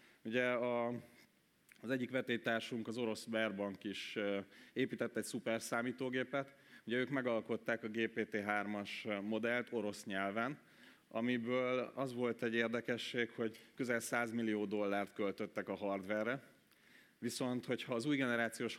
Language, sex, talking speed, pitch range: Hungarian, male, 125 wpm, 110-125 Hz